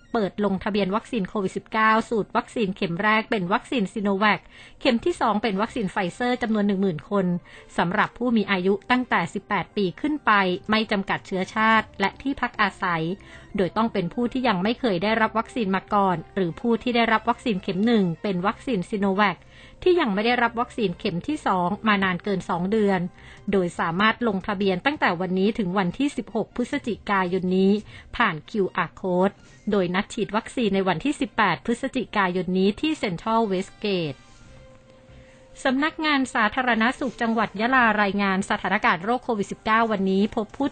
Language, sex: Thai, female